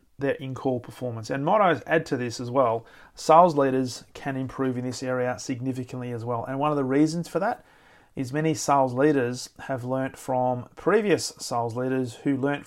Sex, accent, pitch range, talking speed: male, Australian, 130-145 Hz, 185 wpm